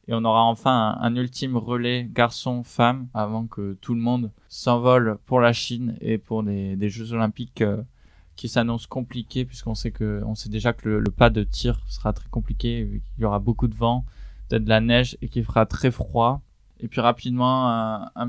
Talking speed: 205 wpm